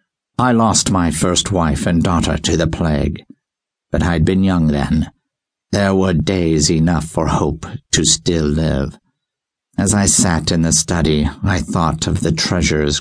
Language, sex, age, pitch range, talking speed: English, male, 60-79, 75-100 Hz, 160 wpm